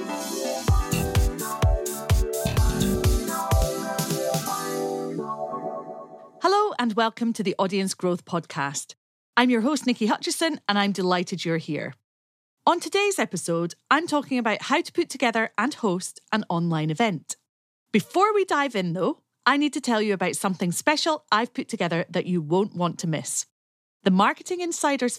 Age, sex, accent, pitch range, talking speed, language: 40-59, female, British, 170-260 Hz, 140 wpm, English